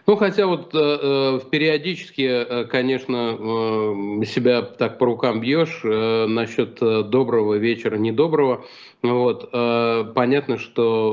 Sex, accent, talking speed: male, native, 115 wpm